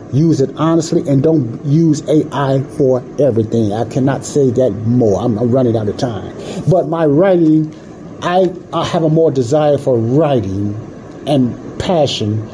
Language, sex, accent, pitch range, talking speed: English, male, American, 120-160 Hz, 155 wpm